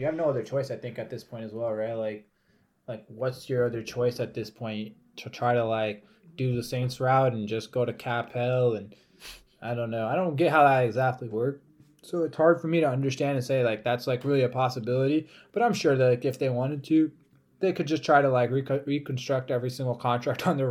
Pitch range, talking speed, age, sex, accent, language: 115-130 Hz, 240 wpm, 20-39, male, American, English